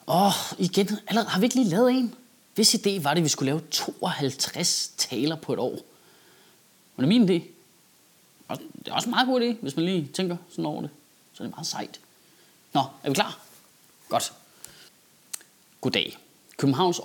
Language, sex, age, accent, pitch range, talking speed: Danish, male, 30-49, native, 140-210 Hz, 185 wpm